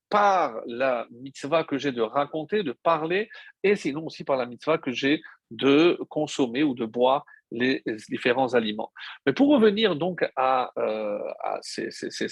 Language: French